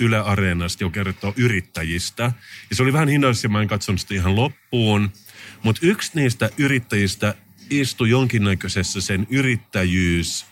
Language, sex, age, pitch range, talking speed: Finnish, male, 30-49, 95-120 Hz, 135 wpm